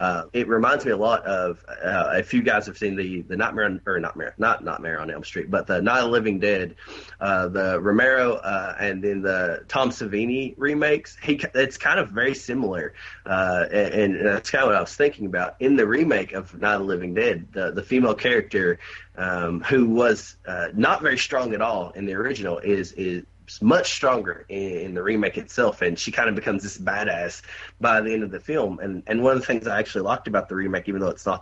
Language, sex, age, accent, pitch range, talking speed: English, male, 20-39, American, 90-115 Hz, 230 wpm